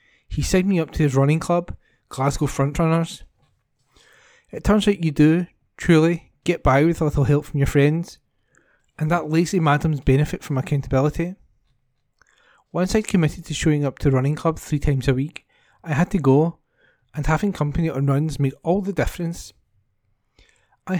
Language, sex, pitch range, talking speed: English, male, 140-170 Hz, 170 wpm